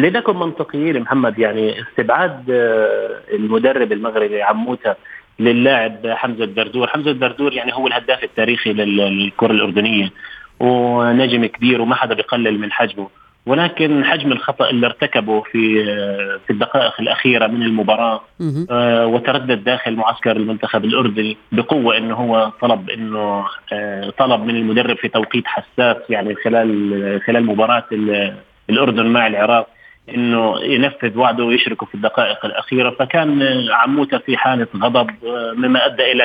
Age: 30-49